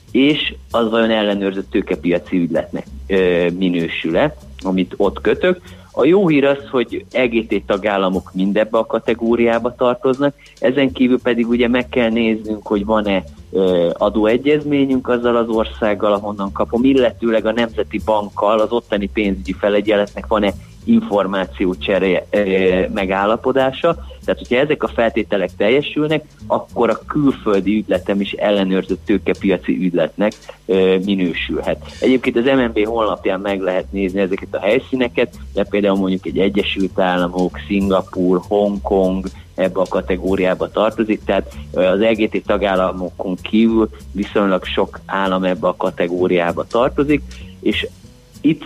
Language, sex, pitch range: Hungarian, male, 95-115 Hz